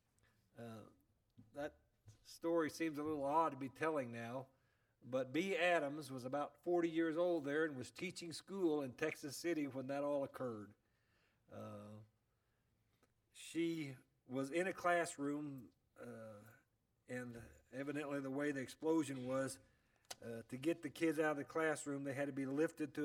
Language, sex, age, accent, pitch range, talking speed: English, male, 50-69, American, 115-155 Hz, 155 wpm